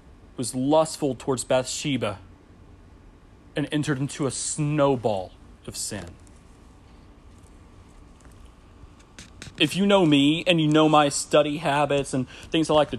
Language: English